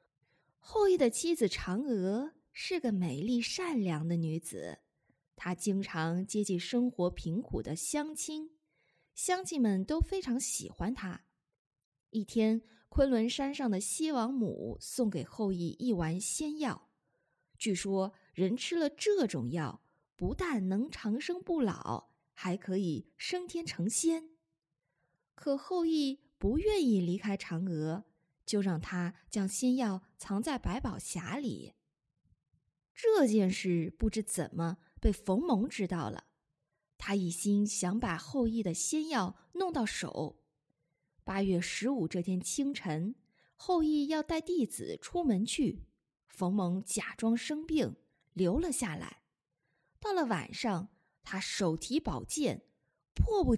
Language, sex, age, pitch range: Chinese, female, 20-39, 180-275 Hz